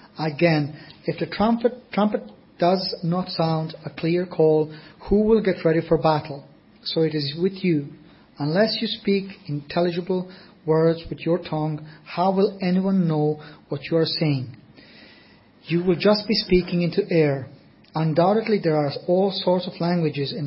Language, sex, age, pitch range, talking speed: English, male, 40-59, 155-185 Hz, 155 wpm